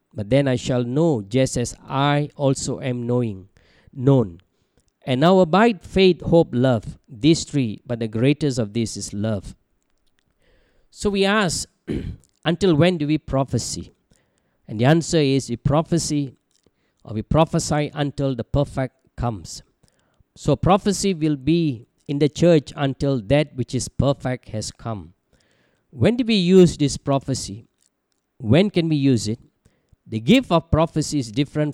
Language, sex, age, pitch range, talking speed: English, male, 50-69, 120-160 Hz, 150 wpm